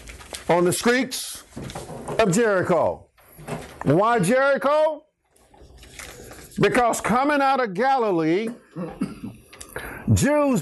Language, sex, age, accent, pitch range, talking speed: English, male, 50-69, American, 205-265 Hz, 75 wpm